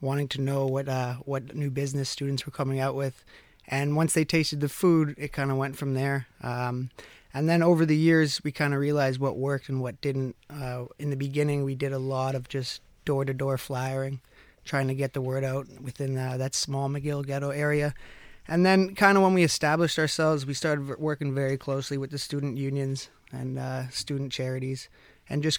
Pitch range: 130-150 Hz